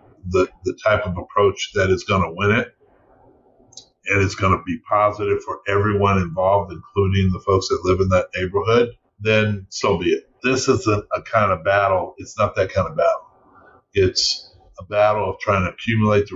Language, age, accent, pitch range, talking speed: English, 50-69, American, 95-110 Hz, 195 wpm